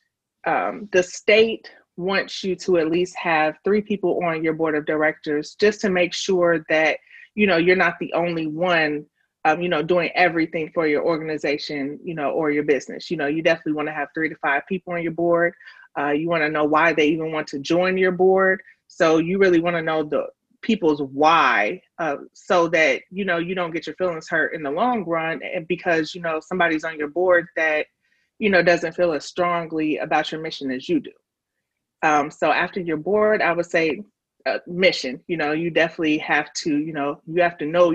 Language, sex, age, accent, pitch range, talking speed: English, female, 30-49, American, 155-185 Hz, 215 wpm